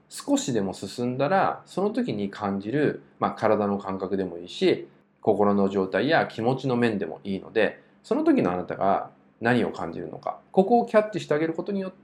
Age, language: 20-39, Japanese